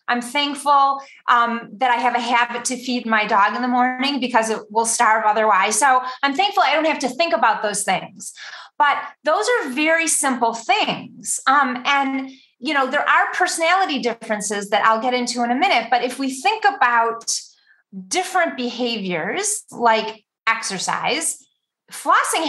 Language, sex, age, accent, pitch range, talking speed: English, female, 30-49, American, 230-300 Hz, 165 wpm